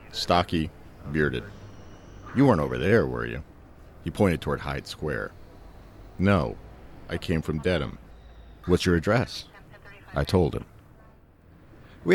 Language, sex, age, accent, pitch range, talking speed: English, male, 50-69, American, 75-95 Hz, 125 wpm